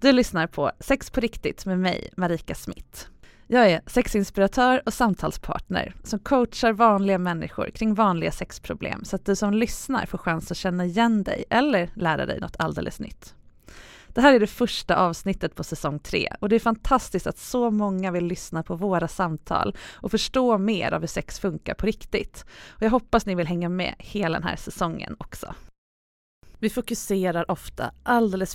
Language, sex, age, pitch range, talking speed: English, female, 20-39, 175-225 Hz, 175 wpm